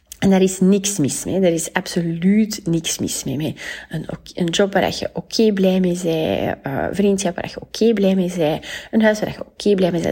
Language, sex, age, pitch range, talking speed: Dutch, female, 30-49, 175-220 Hz, 245 wpm